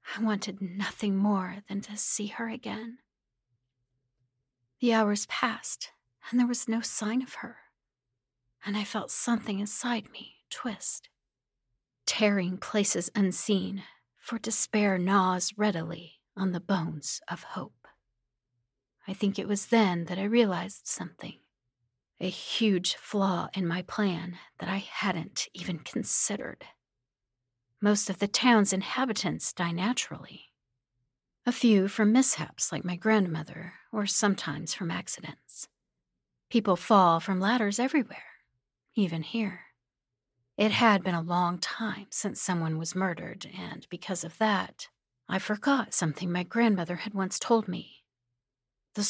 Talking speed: 130 wpm